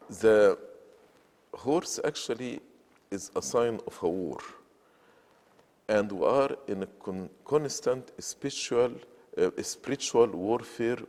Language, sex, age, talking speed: English, male, 50-69, 105 wpm